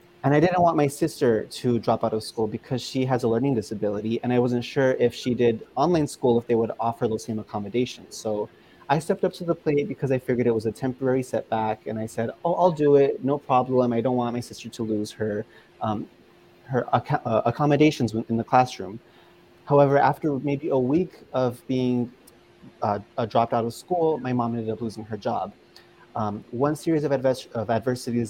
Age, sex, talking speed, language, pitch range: 30-49, male, 210 wpm, English, 110-140 Hz